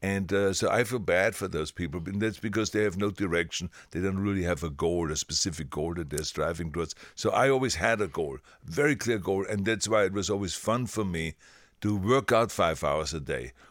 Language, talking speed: English, 235 wpm